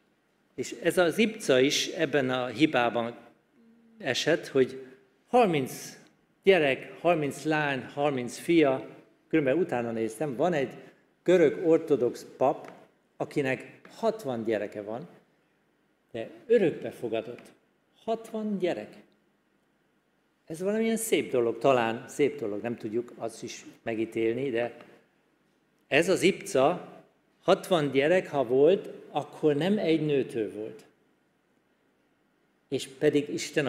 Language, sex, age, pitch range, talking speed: Hungarian, male, 50-69, 130-185 Hz, 110 wpm